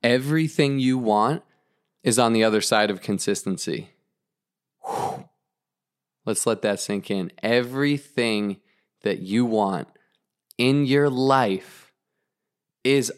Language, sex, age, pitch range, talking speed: English, male, 20-39, 110-140 Hz, 105 wpm